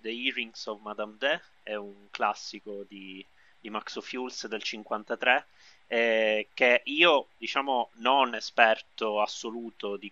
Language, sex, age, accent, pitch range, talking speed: Italian, male, 30-49, native, 105-120 Hz, 130 wpm